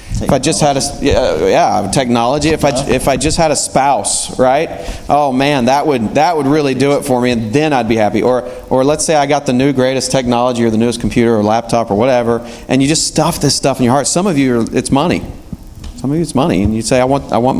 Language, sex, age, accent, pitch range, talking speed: English, male, 30-49, American, 105-125 Hz, 265 wpm